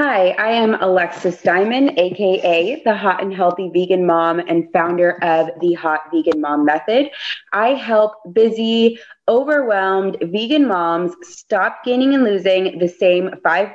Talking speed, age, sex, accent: 145 wpm, 20-39, female, American